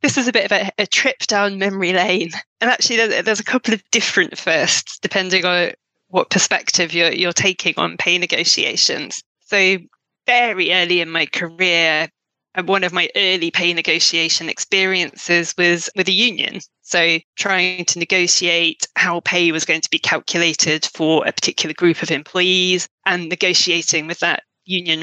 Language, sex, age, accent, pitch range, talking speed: English, female, 20-39, British, 170-200 Hz, 165 wpm